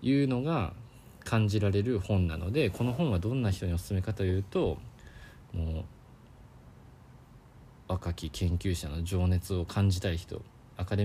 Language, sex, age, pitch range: Japanese, male, 20-39, 90-125 Hz